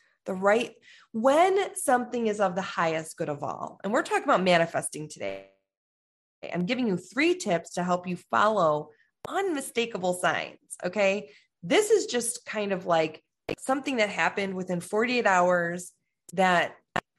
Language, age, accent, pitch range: English, 20-39, American, 170-215 Hz